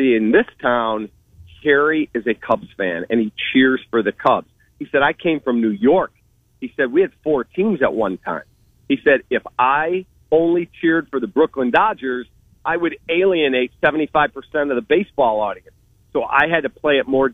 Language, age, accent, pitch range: English, 40-59, American, 120-150 Hz